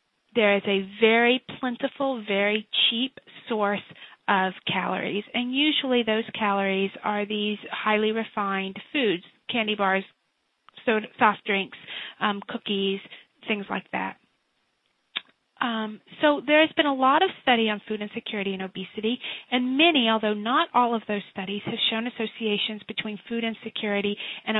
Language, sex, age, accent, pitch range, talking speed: English, female, 30-49, American, 200-245 Hz, 140 wpm